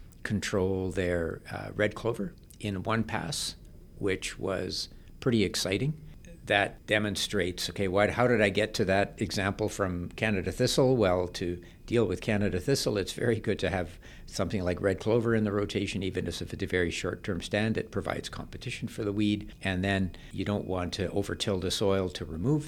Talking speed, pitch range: 175 wpm, 90-110 Hz